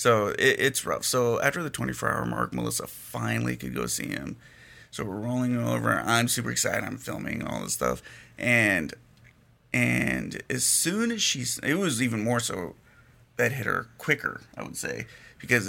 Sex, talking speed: male, 180 wpm